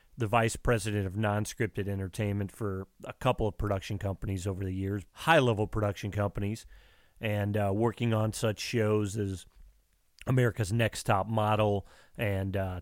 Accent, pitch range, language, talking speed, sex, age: American, 105-125 Hz, English, 145 wpm, male, 30-49